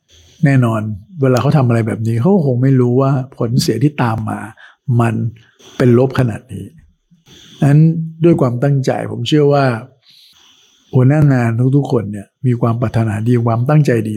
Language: Thai